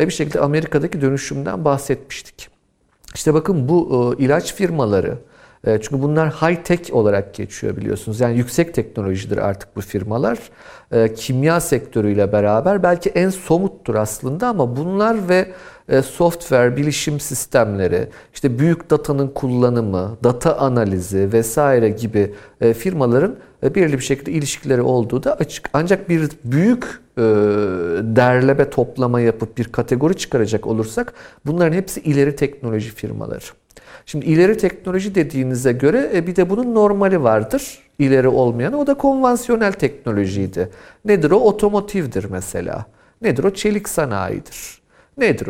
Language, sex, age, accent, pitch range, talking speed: Turkish, male, 50-69, native, 115-175 Hz, 120 wpm